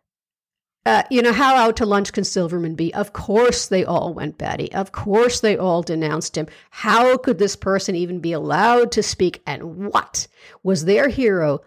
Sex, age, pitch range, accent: female, 50-69, 190-250 Hz, American